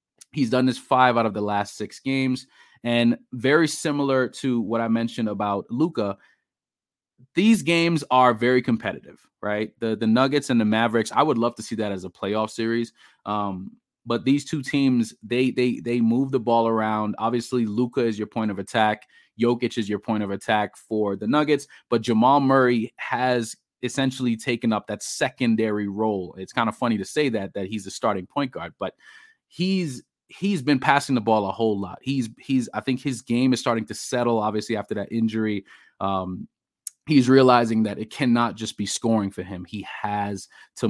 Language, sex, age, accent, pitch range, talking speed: English, male, 30-49, American, 105-130 Hz, 190 wpm